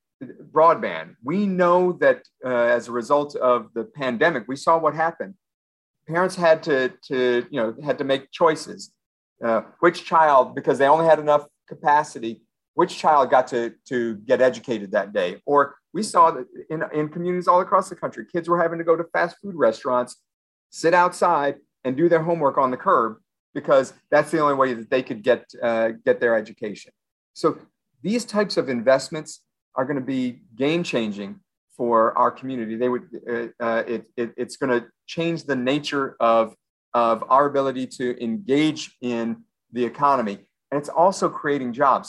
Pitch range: 120-155 Hz